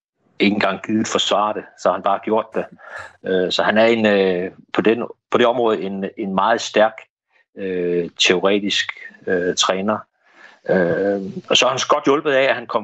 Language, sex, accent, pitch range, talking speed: Danish, male, native, 95-110 Hz, 145 wpm